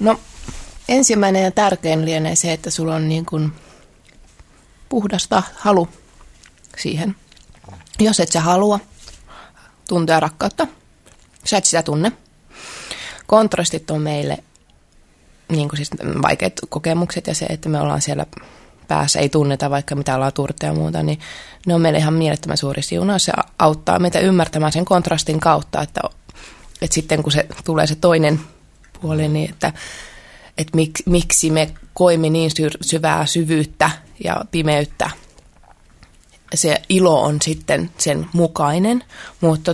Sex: female